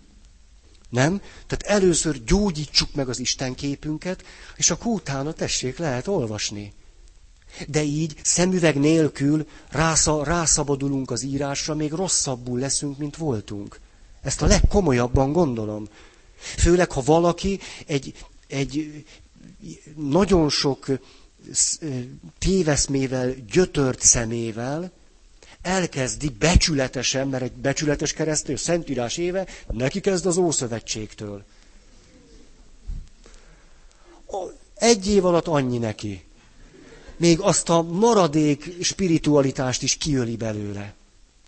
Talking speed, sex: 95 wpm, male